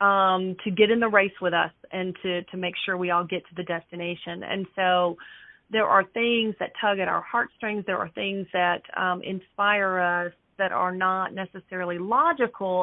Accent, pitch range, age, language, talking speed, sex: American, 185-225 Hz, 30-49, English, 190 wpm, female